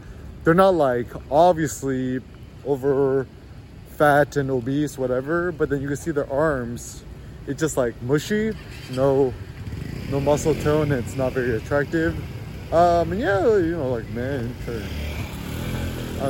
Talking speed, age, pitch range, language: 135 wpm, 20-39, 110-145 Hz, English